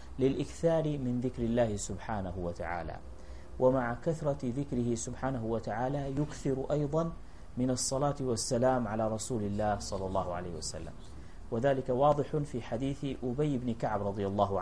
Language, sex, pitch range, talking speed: English, male, 100-140 Hz, 130 wpm